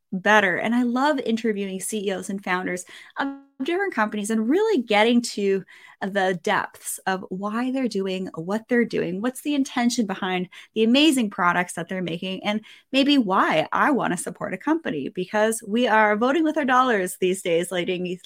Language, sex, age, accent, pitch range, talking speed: English, female, 20-39, American, 190-245 Hz, 175 wpm